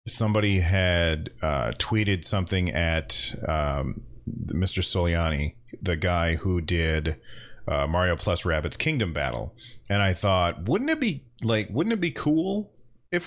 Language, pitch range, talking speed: English, 90-115 Hz, 140 wpm